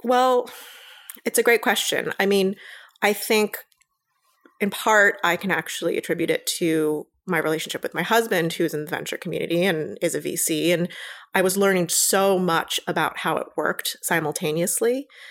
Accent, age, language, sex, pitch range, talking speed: American, 30-49, English, female, 165-205 Hz, 165 wpm